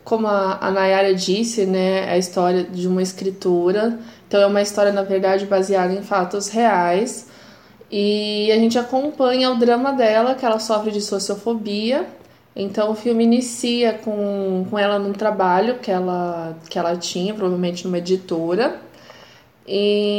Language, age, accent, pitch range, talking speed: Portuguese, 20-39, Brazilian, 190-225 Hz, 155 wpm